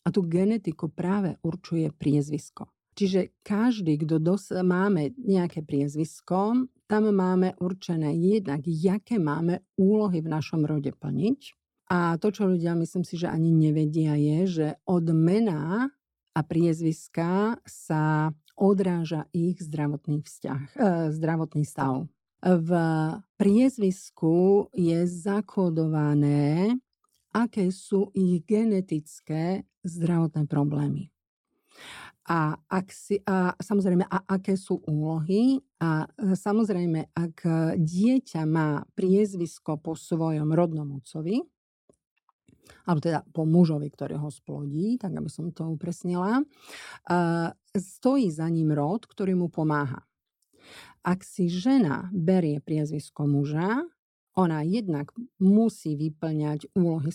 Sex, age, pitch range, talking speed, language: female, 50-69, 155-195 Hz, 110 wpm, Slovak